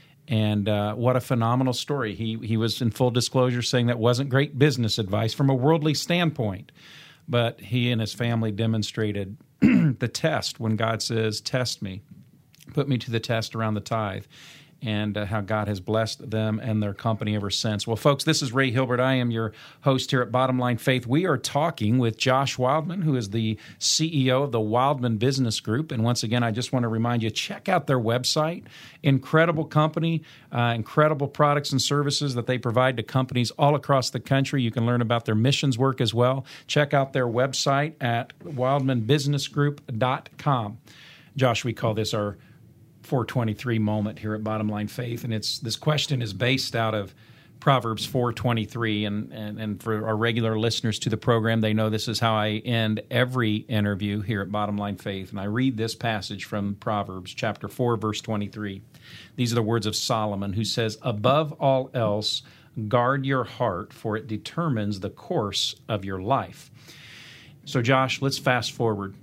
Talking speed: 185 wpm